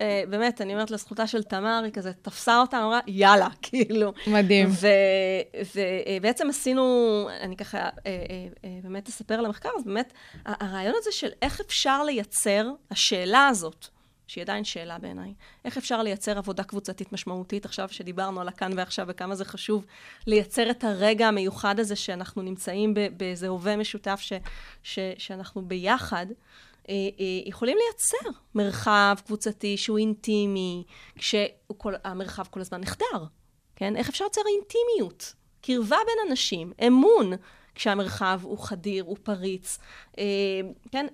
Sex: female